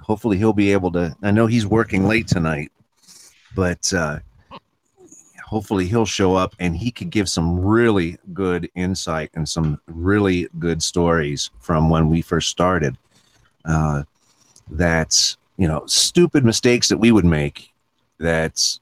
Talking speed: 145 wpm